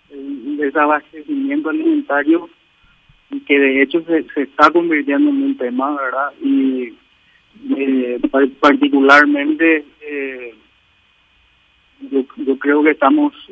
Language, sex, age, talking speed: Spanish, male, 50-69, 105 wpm